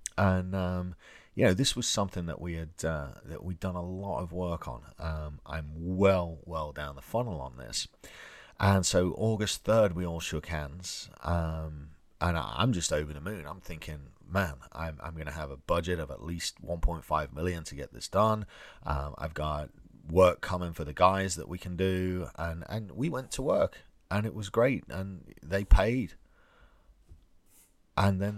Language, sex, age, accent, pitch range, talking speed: English, male, 40-59, British, 80-95 Hz, 185 wpm